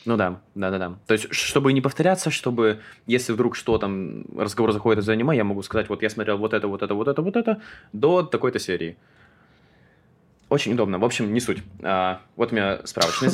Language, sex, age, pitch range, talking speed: Russian, male, 20-39, 95-115 Hz, 205 wpm